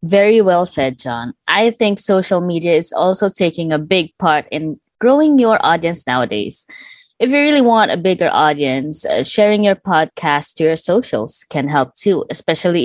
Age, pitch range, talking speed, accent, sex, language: 20-39, 155-215 Hz, 175 wpm, Filipino, female, English